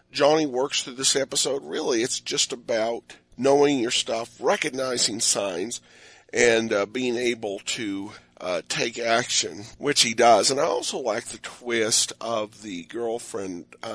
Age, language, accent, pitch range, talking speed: 50-69, English, American, 115-155 Hz, 150 wpm